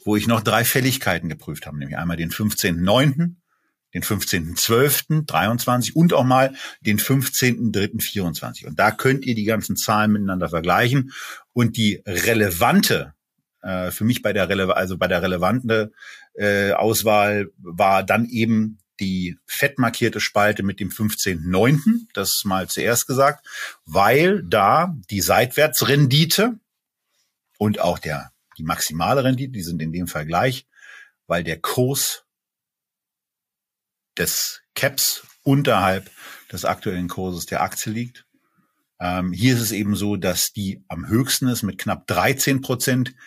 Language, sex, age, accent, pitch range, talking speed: German, male, 40-59, German, 95-125 Hz, 135 wpm